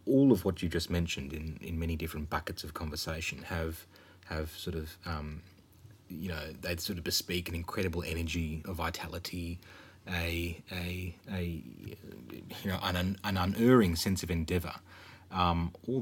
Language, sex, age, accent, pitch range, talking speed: English, male, 30-49, Australian, 80-95 Hz, 155 wpm